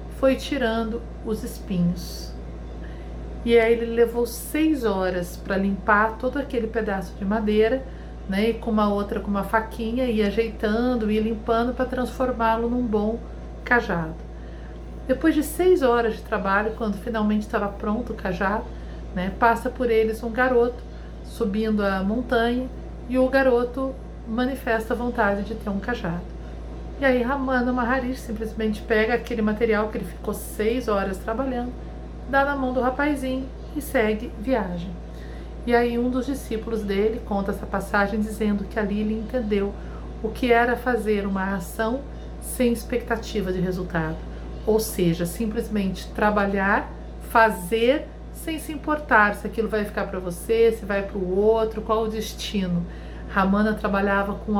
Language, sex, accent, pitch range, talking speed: Portuguese, female, Brazilian, 200-240 Hz, 150 wpm